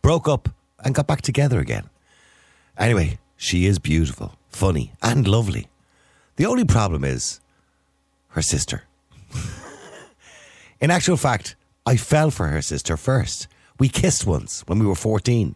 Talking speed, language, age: 140 wpm, English, 60-79